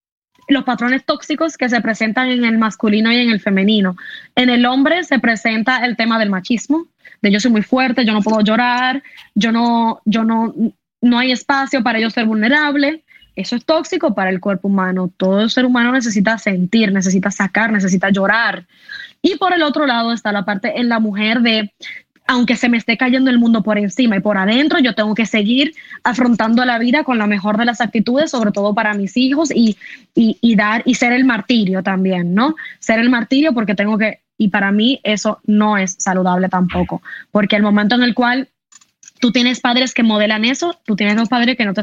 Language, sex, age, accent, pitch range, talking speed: Spanish, female, 10-29, American, 210-250 Hz, 205 wpm